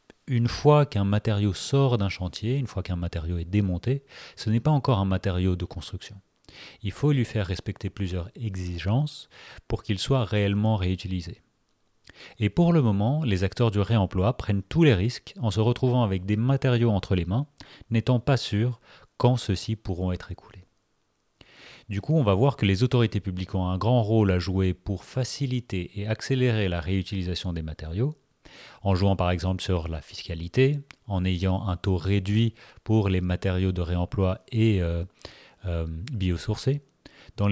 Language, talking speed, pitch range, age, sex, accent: French, 170 wpm, 95-115 Hz, 30-49, male, French